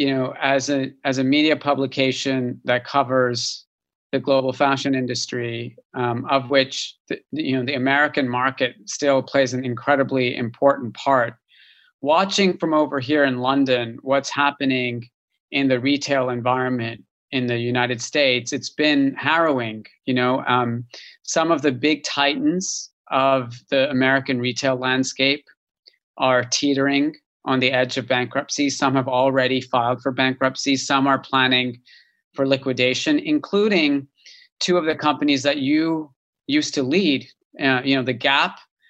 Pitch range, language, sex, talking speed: 130-145 Hz, English, male, 145 wpm